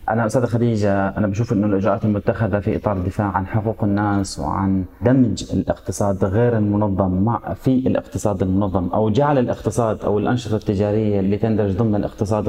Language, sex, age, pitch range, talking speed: Arabic, male, 30-49, 100-125 Hz, 160 wpm